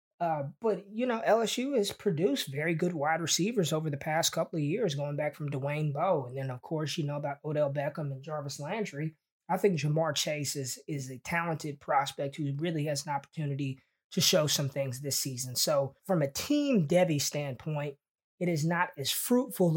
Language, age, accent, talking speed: English, 20-39, American, 195 wpm